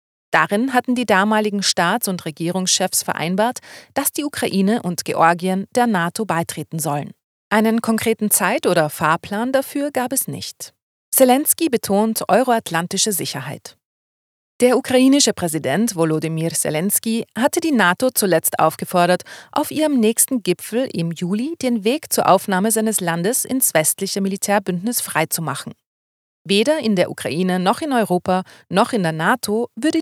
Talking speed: 135 wpm